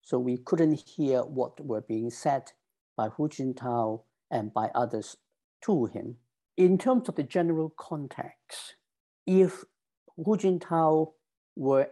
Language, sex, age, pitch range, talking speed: English, male, 60-79, 120-155 Hz, 130 wpm